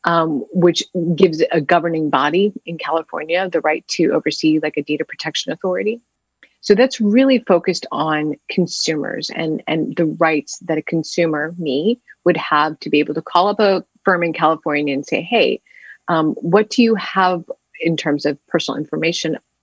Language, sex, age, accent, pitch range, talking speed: English, female, 30-49, American, 155-195 Hz, 170 wpm